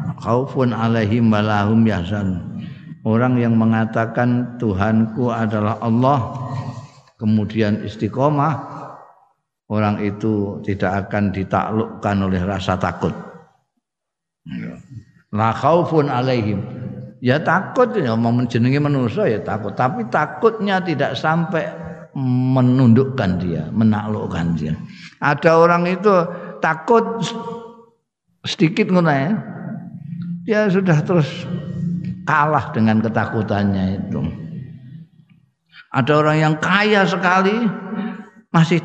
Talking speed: 85 wpm